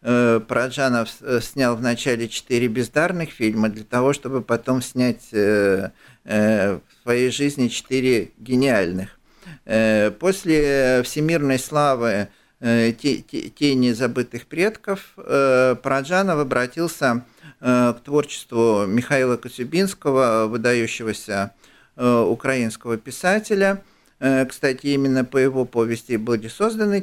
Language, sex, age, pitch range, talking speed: Russian, male, 50-69, 120-150 Hz, 85 wpm